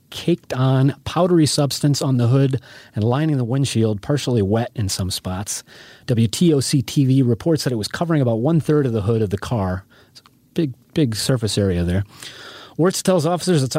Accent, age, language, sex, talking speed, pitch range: American, 30-49, English, male, 175 wpm, 115-145 Hz